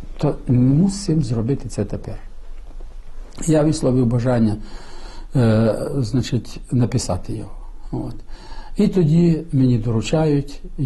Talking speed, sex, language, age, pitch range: 95 wpm, male, Ukrainian, 60-79, 110-150 Hz